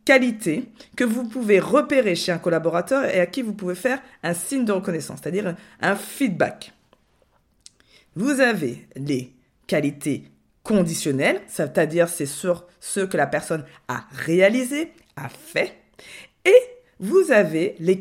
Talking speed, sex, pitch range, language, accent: 135 wpm, female, 165-245 Hz, French, French